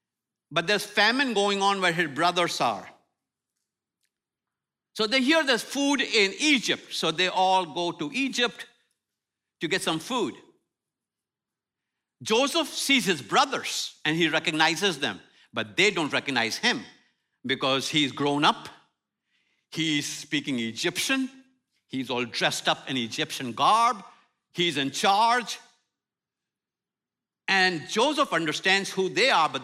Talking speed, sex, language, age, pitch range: 130 wpm, male, English, 60-79, 170-245 Hz